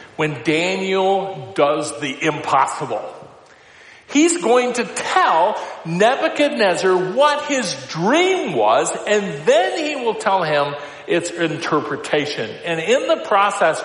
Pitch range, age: 150-225 Hz, 50-69